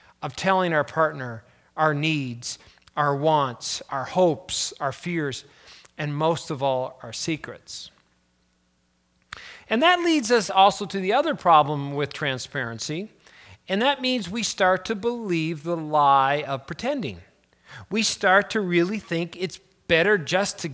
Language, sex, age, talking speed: English, male, 40-59, 140 wpm